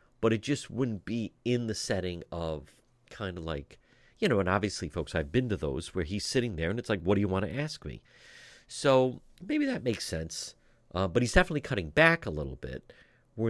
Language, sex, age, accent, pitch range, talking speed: English, male, 50-69, American, 85-120 Hz, 220 wpm